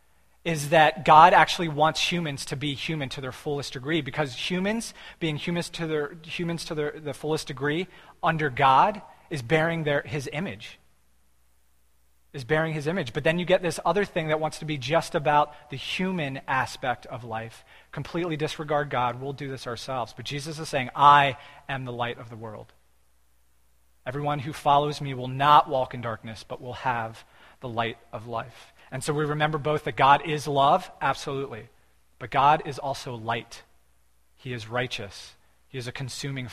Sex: male